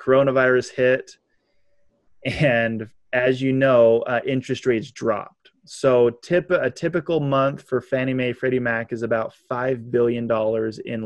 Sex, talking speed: male, 140 wpm